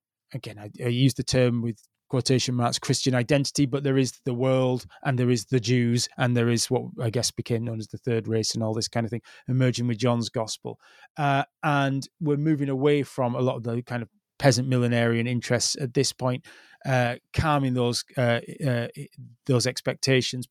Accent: British